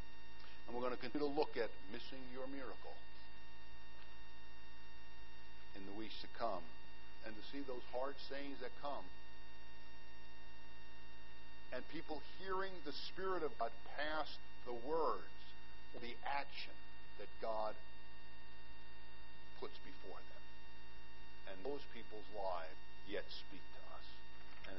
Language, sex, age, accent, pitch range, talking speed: English, male, 50-69, American, 90-145 Hz, 125 wpm